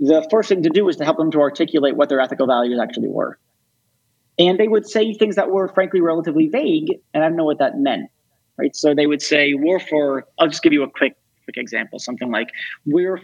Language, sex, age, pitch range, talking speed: English, male, 30-49, 135-215 Hz, 235 wpm